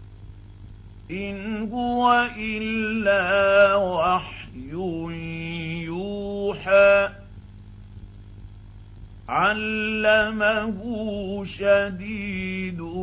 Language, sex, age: Arabic, male, 50-69